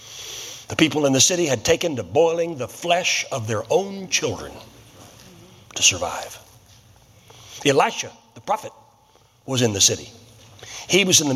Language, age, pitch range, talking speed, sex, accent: English, 60-79, 115-180 Hz, 150 wpm, male, American